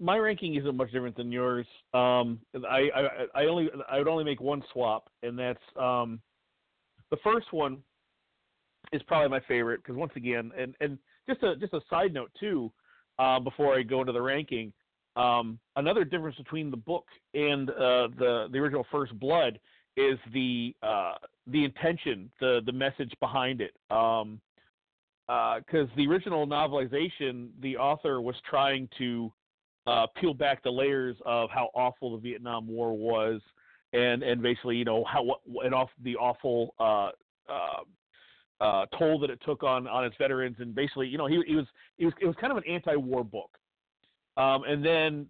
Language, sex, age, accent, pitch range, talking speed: English, male, 40-59, American, 125-150 Hz, 180 wpm